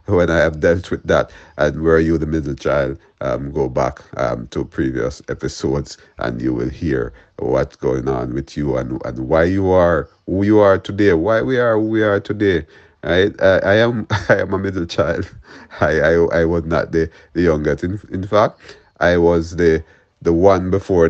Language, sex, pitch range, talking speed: English, male, 70-95 Hz, 200 wpm